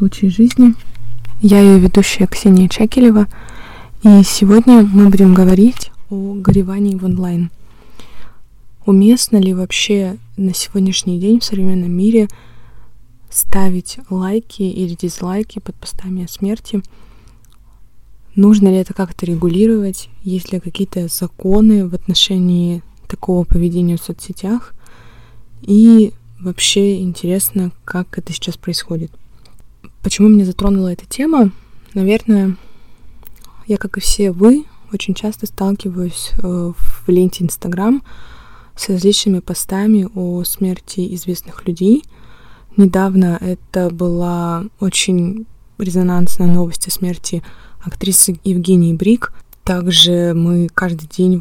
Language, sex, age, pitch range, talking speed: Russian, female, 20-39, 175-200 Hz, 110 wpm